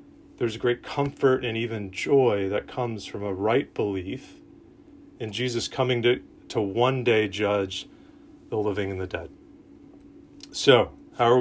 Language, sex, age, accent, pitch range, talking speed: English, male, 30-49, American, 100-130 Hz, 155 wpm